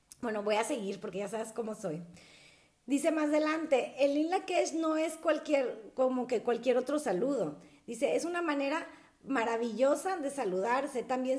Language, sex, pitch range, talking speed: Spanish, female, 250-310 Hz, 160 wpm